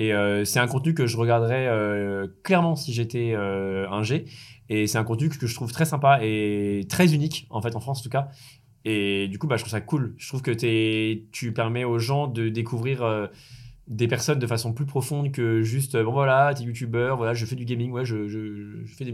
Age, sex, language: 20-39, male, French